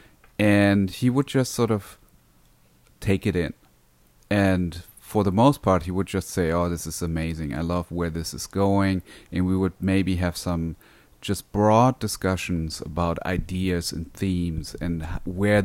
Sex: male